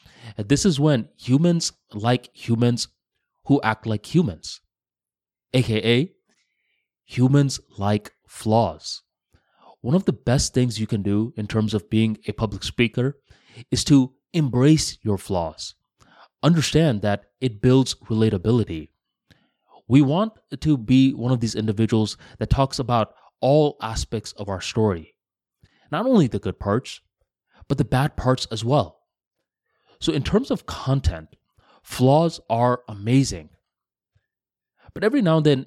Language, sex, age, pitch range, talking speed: English, male, 20-39, 105-140 Hz, 135 wpm